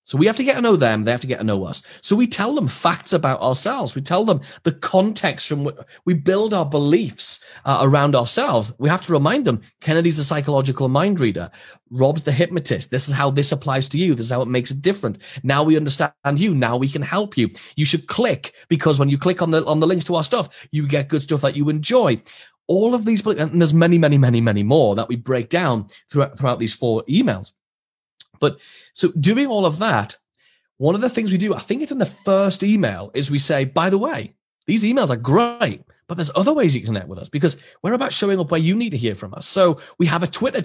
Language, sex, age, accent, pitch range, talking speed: English, male, 30-49, British, 135-190 Hz, 250 wpm